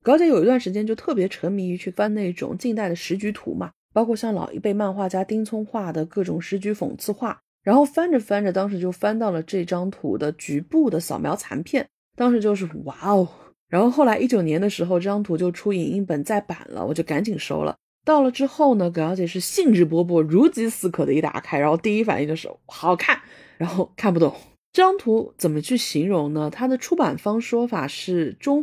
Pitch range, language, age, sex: 175-245 Hz, Chinese, 30-49, female